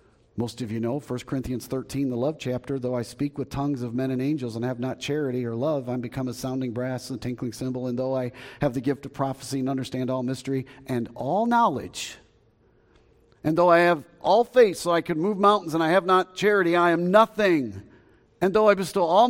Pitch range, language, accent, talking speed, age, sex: 120-190 Hz, English, American, 225 wpm, 50-69, male